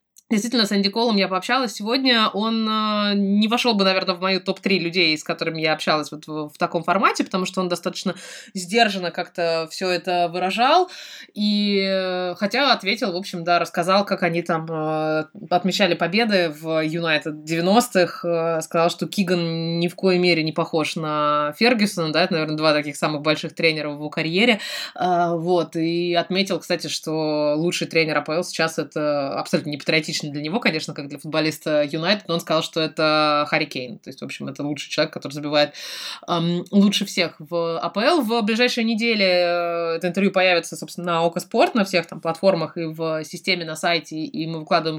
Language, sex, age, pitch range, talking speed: Russian, female, 20-39, 160-195 Hz, 180 wpm